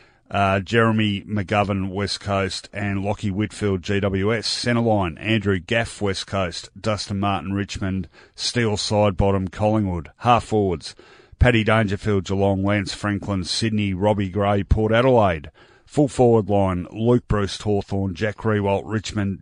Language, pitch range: English, 95-115 Hz